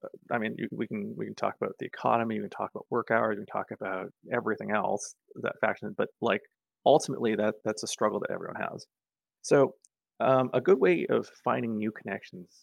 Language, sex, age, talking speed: English, male, 20-39, 205 wpm